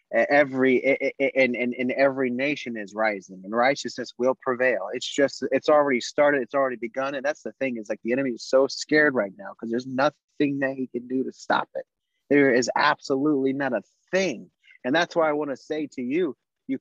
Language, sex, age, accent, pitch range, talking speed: English, male, 30-49, American, 120-150 Hz, 210 wpm